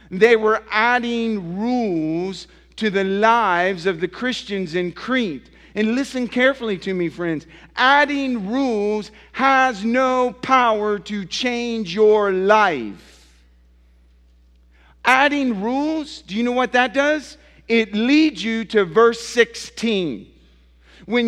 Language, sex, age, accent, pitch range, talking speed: English, male, 50-69, American, 170-235 Hz, 120 wpm